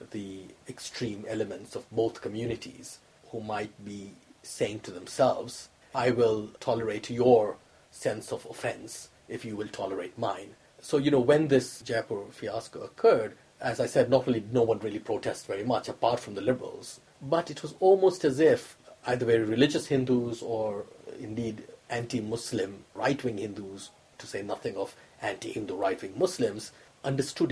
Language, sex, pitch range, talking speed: English, male, 115-140 Hz, 155 wpm